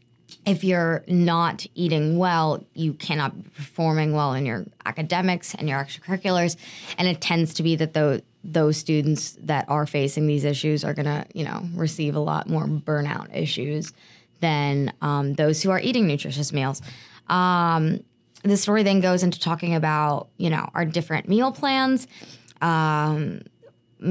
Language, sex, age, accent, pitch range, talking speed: English, female, 20-39, American, 150-175 Hz, 160 wpm